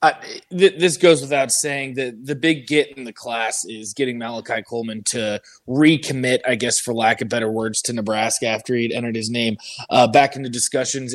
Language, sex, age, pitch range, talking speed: English, male, 20-39, 120-155 Hz, 205 wpm